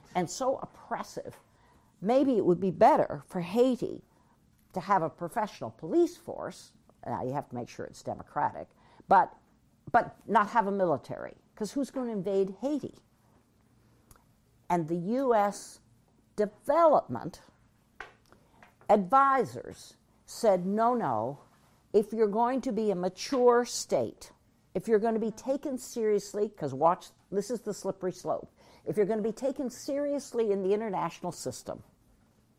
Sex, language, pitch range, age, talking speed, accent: female, Swedish, 170-230 Hz, 60-79, 140 wpm, American